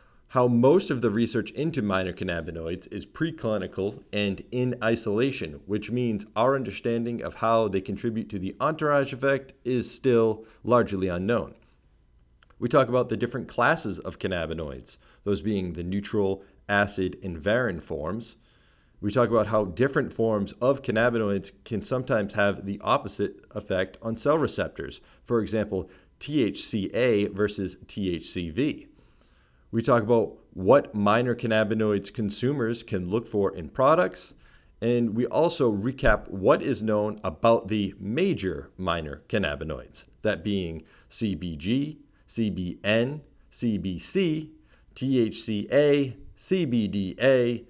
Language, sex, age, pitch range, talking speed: English, male, 40-59, 100-120 Hz, 125 wpm